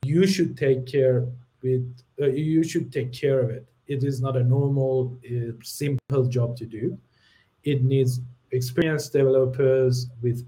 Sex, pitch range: male, 125-155 Hz